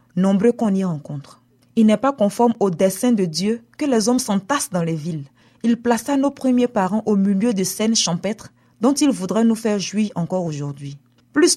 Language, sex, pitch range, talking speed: French, female, 175-235 Hz, 195 wpm